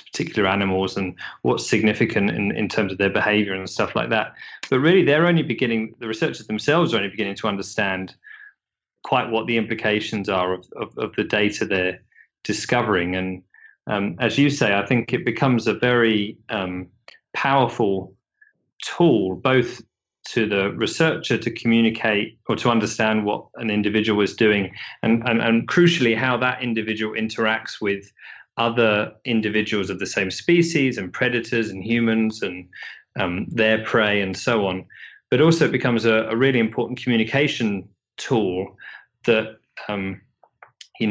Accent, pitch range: British, 105-120 Hz